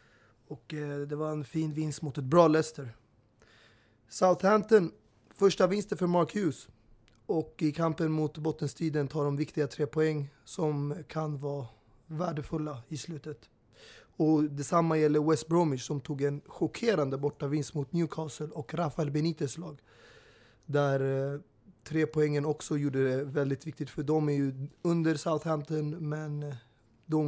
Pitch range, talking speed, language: 140-160 Hz, 145 wpm, Swedish